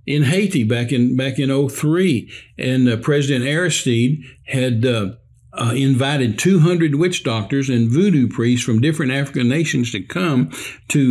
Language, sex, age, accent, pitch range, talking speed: English, male, 60-79, American, 130-160 Hz, 150 wpm